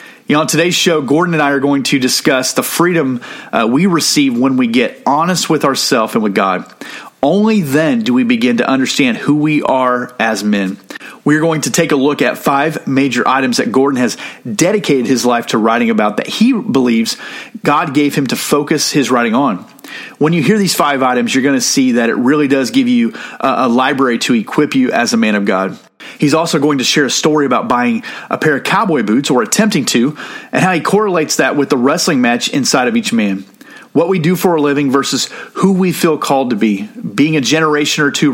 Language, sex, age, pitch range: English, male, 40-59, 135-220 Hz